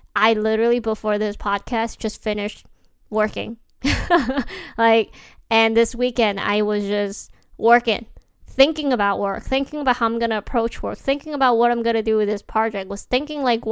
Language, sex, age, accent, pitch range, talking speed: English, female, 20-39, American, 210-245 Hz, 165 wpm